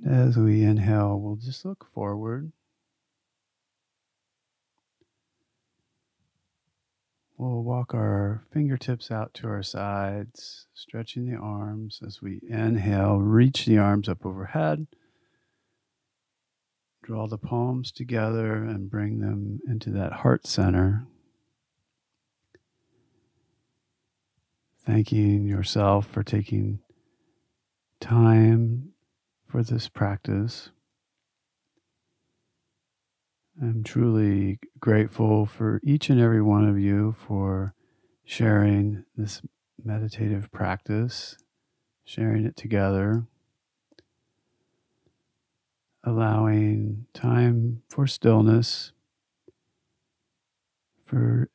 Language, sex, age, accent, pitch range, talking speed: English, male, 40-59, American, 105-120 Hz, 80 wpm